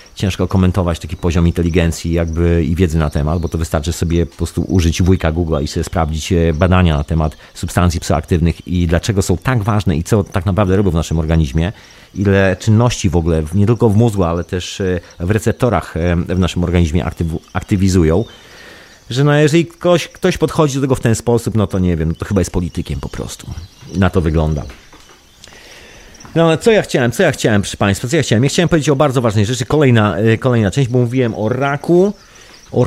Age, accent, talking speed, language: 40-59, native, 200 wpm, Polish